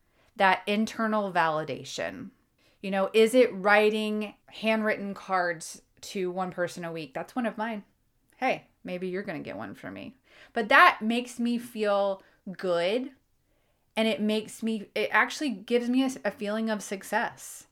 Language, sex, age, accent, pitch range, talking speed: English, female, 30-49, American, 185-220 Hz, 160 wpm